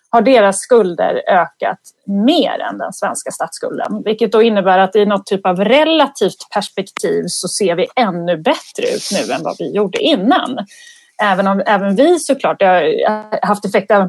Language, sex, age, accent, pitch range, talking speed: Swedish, female, 30-49, native, 195-285 Hz, 175 wpm